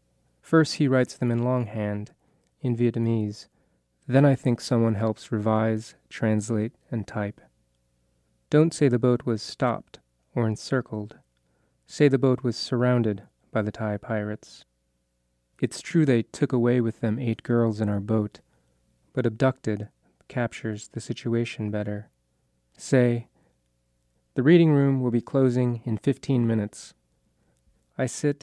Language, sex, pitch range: English, male, 105-125 Hz